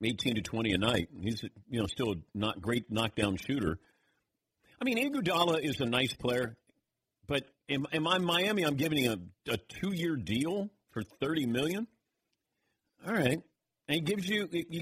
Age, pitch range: 50-69, 110-155 Hz